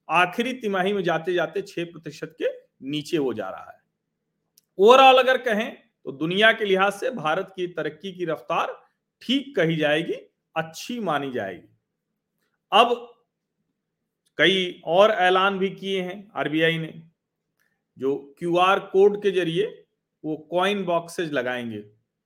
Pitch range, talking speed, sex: 145-215 Hz, 130 wpm, male